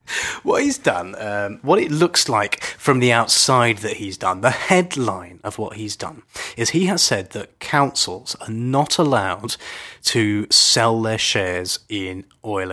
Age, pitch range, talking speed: 30-49, 100-125 Hz, 165 wpm